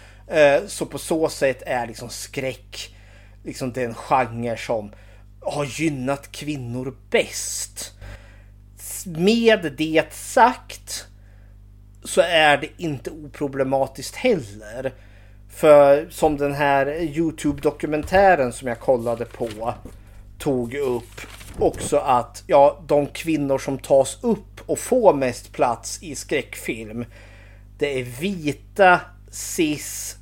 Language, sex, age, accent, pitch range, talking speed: Swedish, male, 30-49, native, 105-150 Hz, 105 wpm